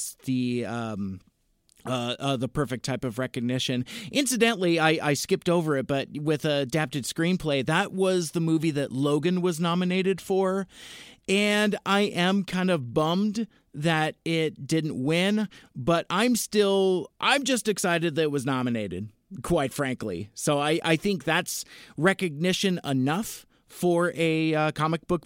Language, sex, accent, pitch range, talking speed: English, male, American, 140-185 Hz, 145 wpm